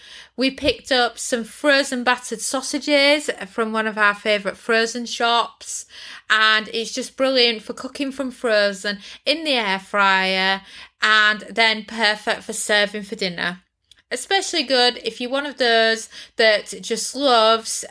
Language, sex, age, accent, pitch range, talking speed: English, female, 20-39, British, 205-260 Hz, 145 wpm